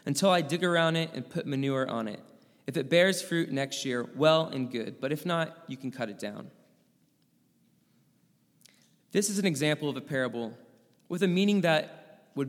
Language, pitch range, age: English, 125-160 Hz, 20-39